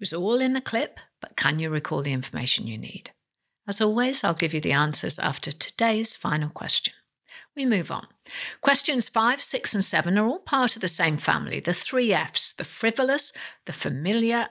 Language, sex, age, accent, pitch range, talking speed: English, female, 60-79, British, 165-240 Hz, 195 wpm